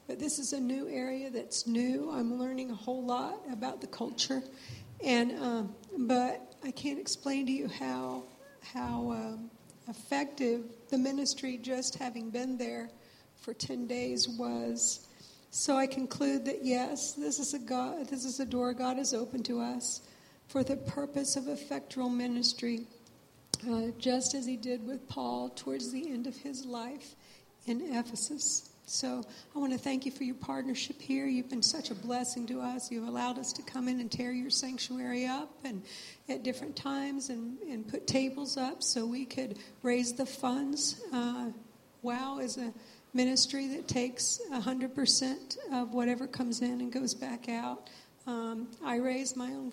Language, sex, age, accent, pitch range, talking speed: English, female, 60-79, American, 235-265 Hz, 170 wpm